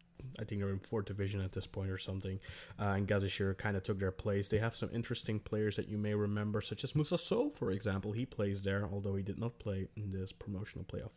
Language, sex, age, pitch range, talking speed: English, male, 20-39, 110-145 Hz, 245 wpm